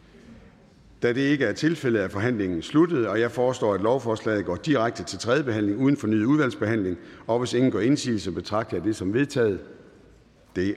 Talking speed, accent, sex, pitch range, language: 180 wpm, native, male, 100-130 Hz, Danish